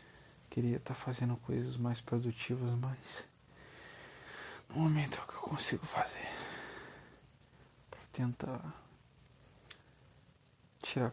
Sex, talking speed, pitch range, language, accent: male, 100 wpm, 90-125 Hz, Portuguese, Brazilian